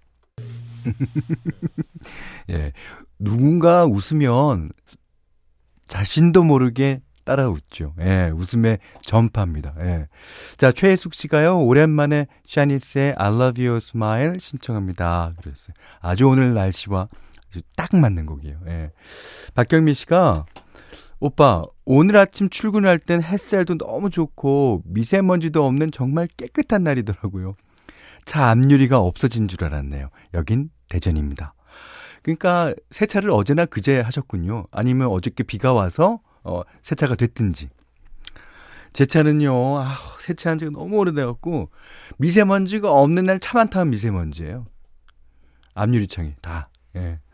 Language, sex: Korean, male